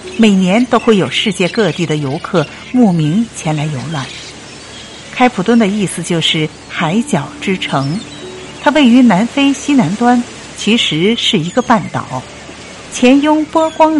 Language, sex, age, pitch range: Chinese, female, 50-69, 160-240 Hz